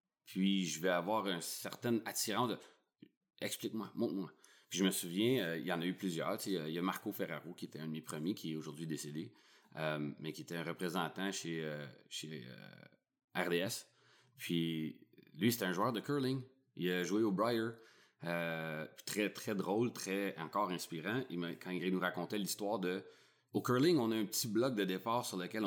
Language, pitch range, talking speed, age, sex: French, 80-100 Hz, 200 wpm, 30-49, male